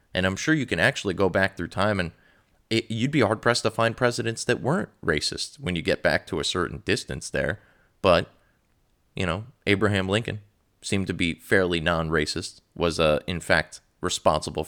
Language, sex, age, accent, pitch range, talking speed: English, male, 30-49, American, 80-100 Hz, 185 wpm